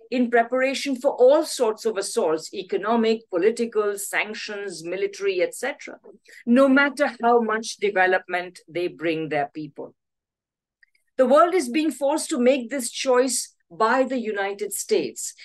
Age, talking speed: 50-69, 130 wpm